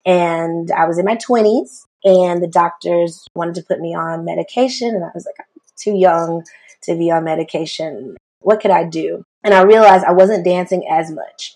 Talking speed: 195 wpm